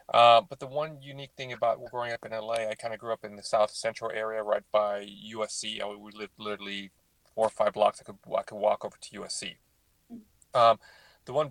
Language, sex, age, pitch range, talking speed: English, male, 30-49, 100-120 Hz, 220 wpm